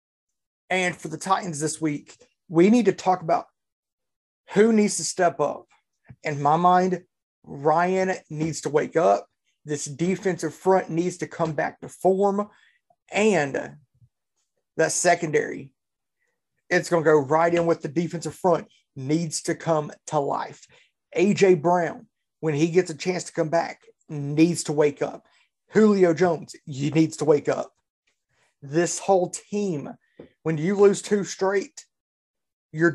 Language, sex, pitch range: English, male, 155-190 Hz